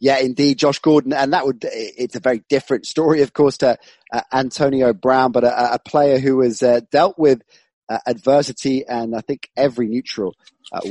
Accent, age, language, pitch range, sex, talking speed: British, 30-49, English, 120-145 Hz, male, 185 wpm